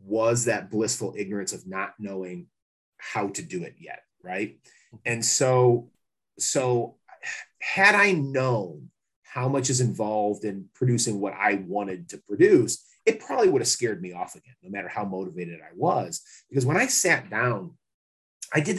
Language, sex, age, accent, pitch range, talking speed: English, male, 30-49, American, 120-140 Hz, 165 wpm